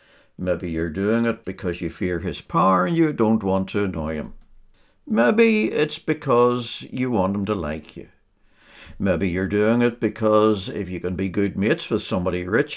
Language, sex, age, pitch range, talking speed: English, male, 60-79, 90-115 Hz, 185 wpm